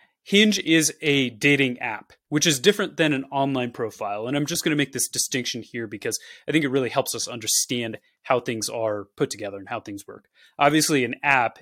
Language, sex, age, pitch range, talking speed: English, male, 20-39, 115-145 Hz, 210 wpm